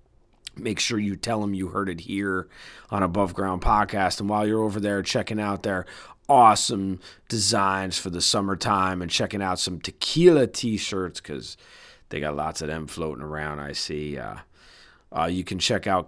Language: English